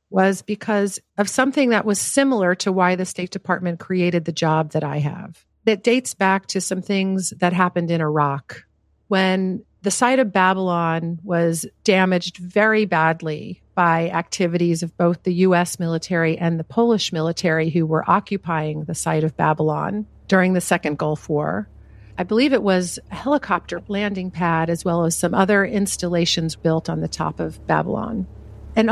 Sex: female